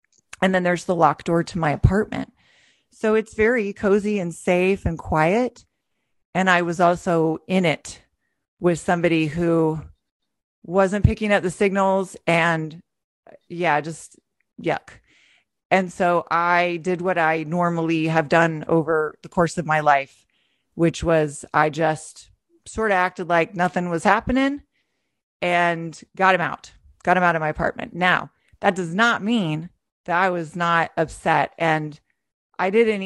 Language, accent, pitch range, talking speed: English, American, 155-190 Hz, 150 wpm